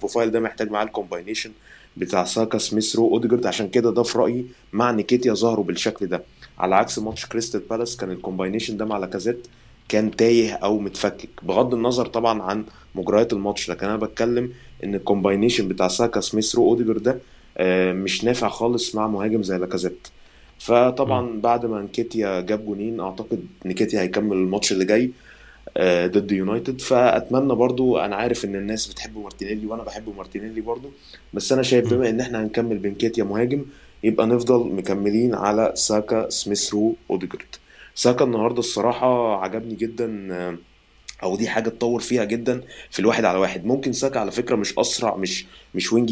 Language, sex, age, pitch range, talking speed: Arabic, male, 20-39, 100-120 Hz, 160 wpm